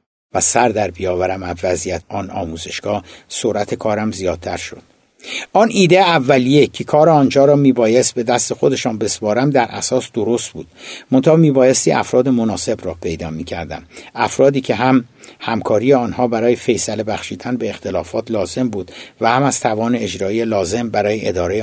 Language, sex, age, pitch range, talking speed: Persian, male, 60-79, 100-135 Hz, 150 wpm